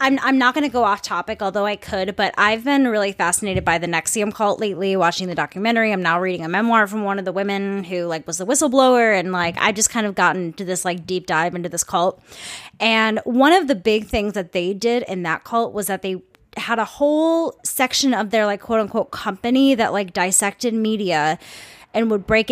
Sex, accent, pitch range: female, American, 185-235 Hz